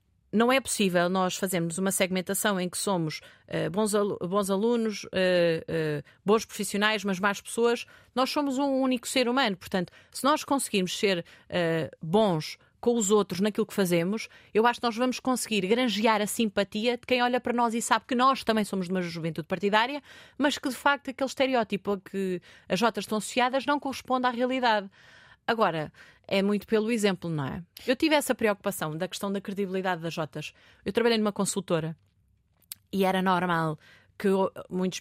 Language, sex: Portuguese, female